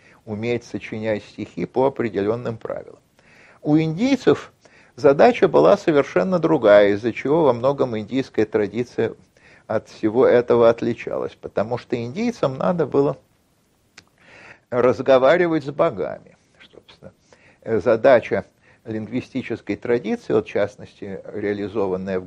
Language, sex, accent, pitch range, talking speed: Russian, male, native, 110-145 Hz, 100 wpm